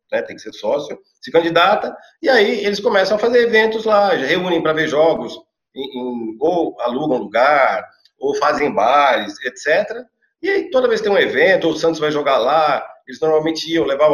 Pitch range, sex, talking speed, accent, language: 155-210 Hz, male, 190 wpm, Brazilian, Portuguese